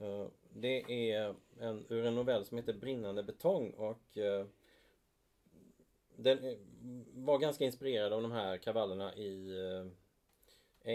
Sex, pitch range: male, 100-125 Hz